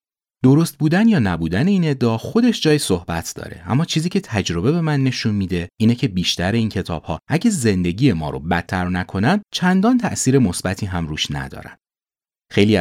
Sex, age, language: male, 30-49, Persian